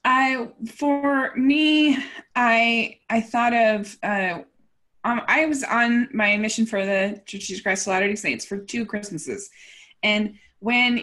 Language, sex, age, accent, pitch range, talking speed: English, female, 20-39, American, 195-245 Hz, 150 wpm